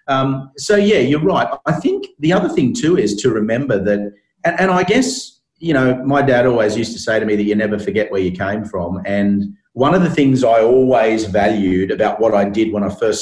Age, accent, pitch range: 40-59, Australian, 100-125 Hz